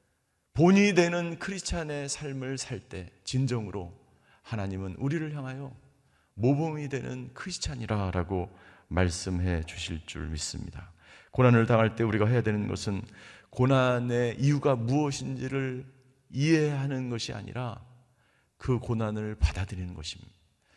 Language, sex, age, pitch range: Korean, male, 40-59, 95-140 Hz